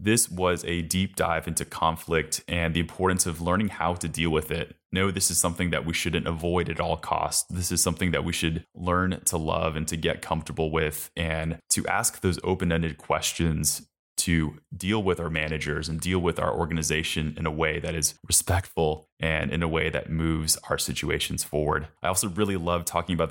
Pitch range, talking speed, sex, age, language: 80-90 Hz, 205 wpm, male, 20-39, English